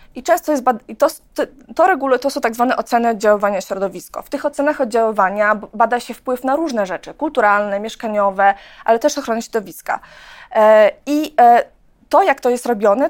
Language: Polish